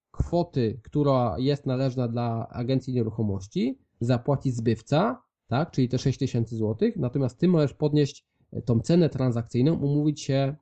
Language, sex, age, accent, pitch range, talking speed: Polish, male, 20-39, native, 110-135 Hz, 135 wpm